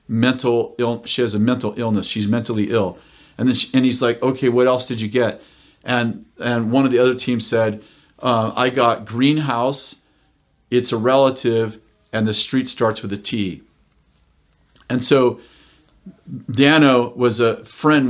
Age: 40-59